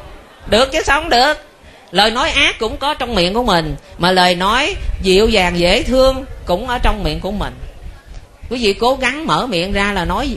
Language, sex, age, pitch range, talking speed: Vietnamese, female, 20-39, 180-250 Hz, 205 wpm